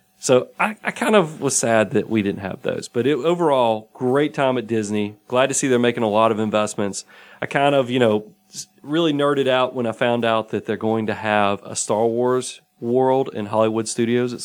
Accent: American